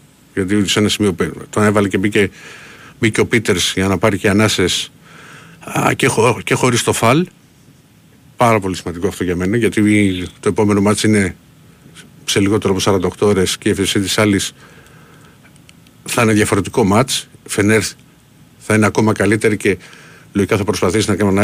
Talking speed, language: 170 wpm, Greek